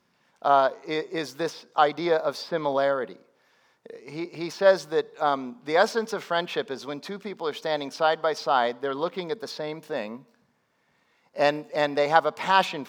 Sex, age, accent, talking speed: male, 40-59, American, 170 wpm